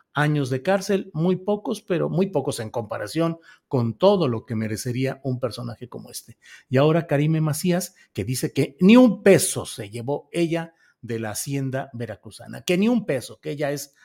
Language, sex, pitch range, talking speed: Spanish, male, 125-155 Hz, 185 wpm